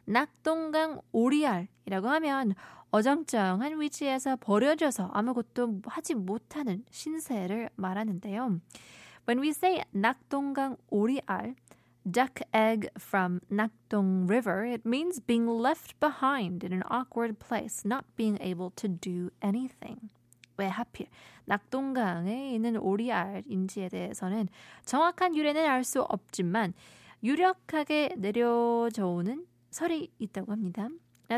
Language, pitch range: Korean, 190-265 Hz